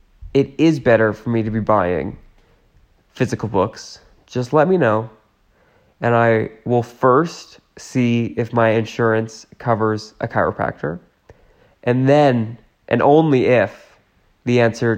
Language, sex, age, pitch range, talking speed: English, male, 20-39, 110-130 Hz, 130 wpm